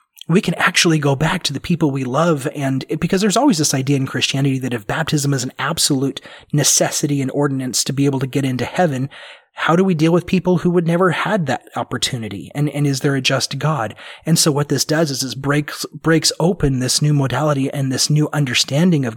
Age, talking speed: 30-49, 230 wpm